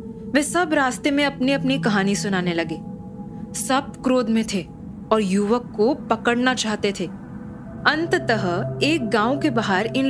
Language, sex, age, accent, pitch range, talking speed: Hindi, female, 20-39, native, 200-255 Hz, 150 wpm